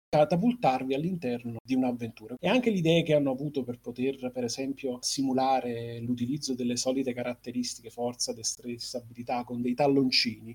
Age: 30-49